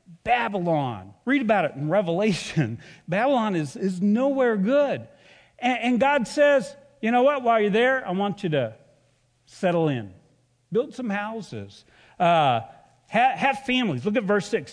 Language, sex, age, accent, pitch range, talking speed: English, male, 50-69, American, 140-220 Hz, 145 wpm